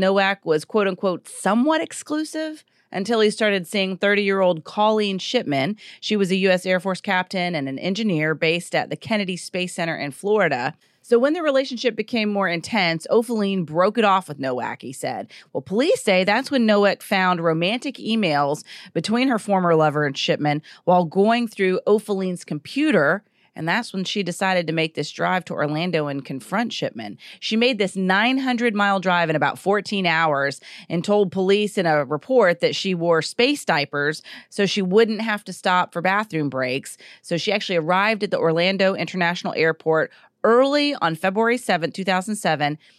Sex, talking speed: female, 170 wpm